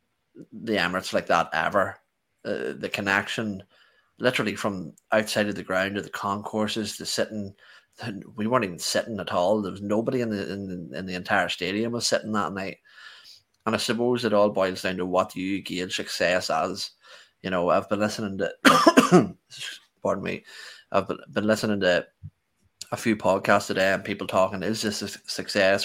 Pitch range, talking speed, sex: 95-110 Hz, 180 wpm, male